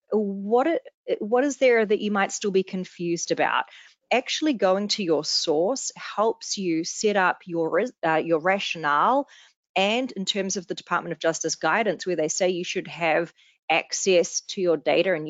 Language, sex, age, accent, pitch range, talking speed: English, female, 30-49, Australian, 165-210 Hz, 175 wpm